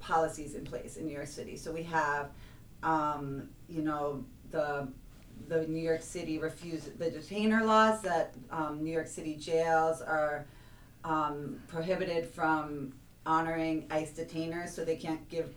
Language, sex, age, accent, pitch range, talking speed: English, female, 30-49, American, 145-165 Hz, 150 wpm